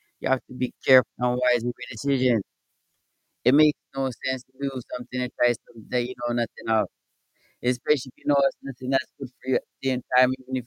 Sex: male